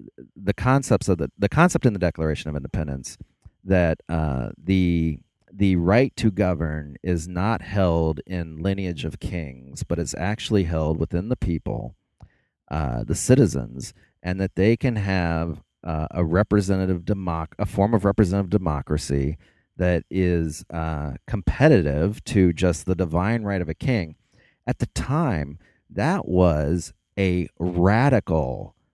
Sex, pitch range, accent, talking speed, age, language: male, 80-105 Hz, American, 140 wpm, 30-49, English